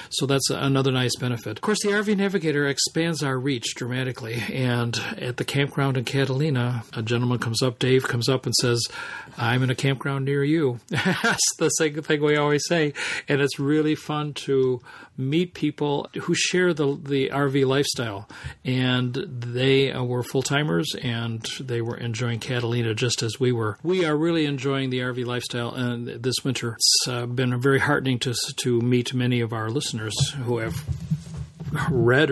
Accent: American